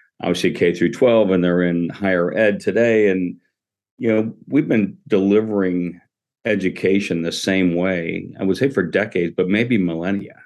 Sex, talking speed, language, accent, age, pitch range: male, 160 wpm, English, American, 50-69, 90-100 Hz